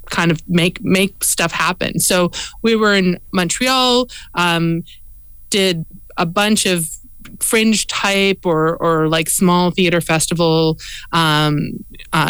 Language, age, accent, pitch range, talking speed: English, 30-49, American, 165-195 Hz, 125 wpm